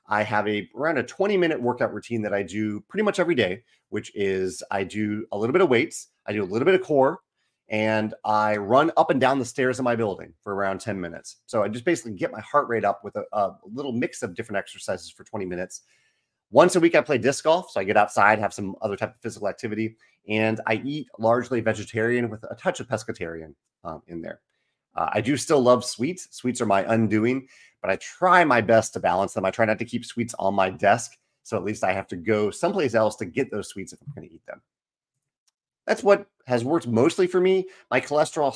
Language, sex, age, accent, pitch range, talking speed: English, male, 30-49, American, 100-130 Hz, 235 wpm